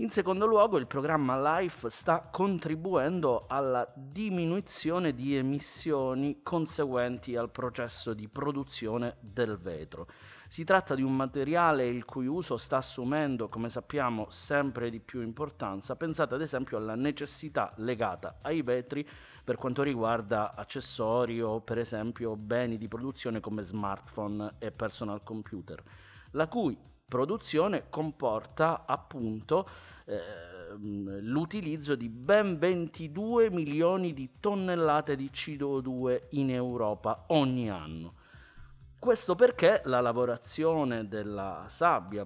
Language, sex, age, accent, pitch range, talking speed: Italian, male, 30-49, native, 115-155 Hz, 120 wpm